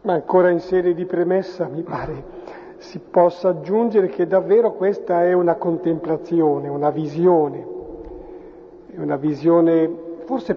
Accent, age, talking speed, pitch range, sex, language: native, 50-69, 125 wpm, 170-210 Hz, male, Italian